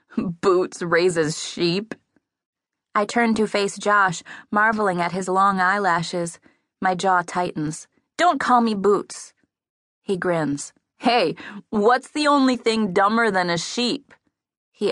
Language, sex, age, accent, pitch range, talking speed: English, female, 20-39, American, 175-230 Hz, 130 wpm